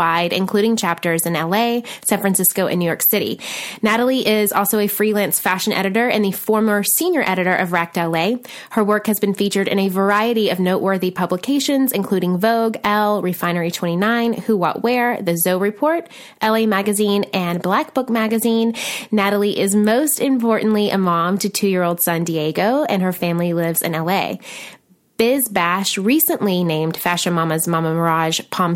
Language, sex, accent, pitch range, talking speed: English, female, American, 180-230 Hz, 165 wpm